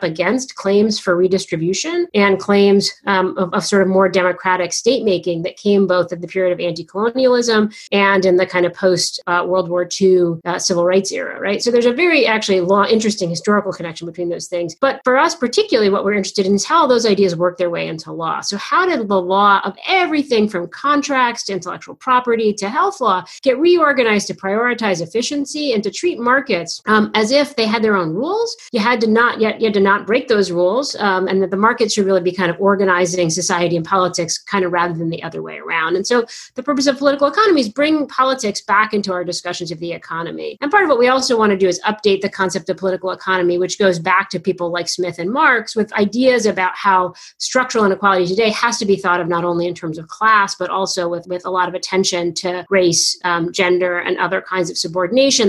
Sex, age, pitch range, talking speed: female, 40-59, 180-230 Hz, 225 wpm